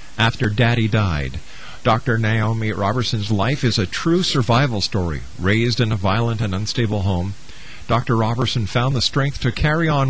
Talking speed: 160 wpm